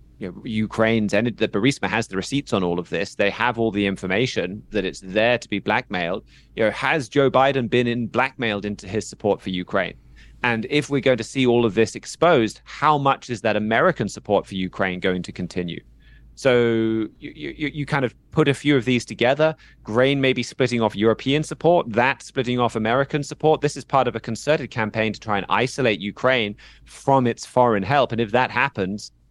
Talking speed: 210 wpm